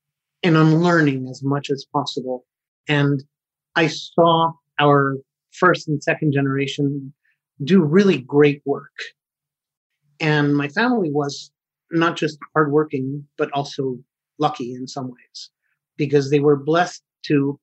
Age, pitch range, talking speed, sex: 30-49, 140-160 Hz, 125 wpm, male